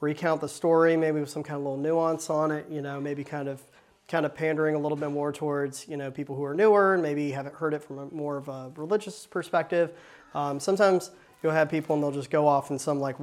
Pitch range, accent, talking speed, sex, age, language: 145-185 Hz, American, 255 wpm, male, 30-49, English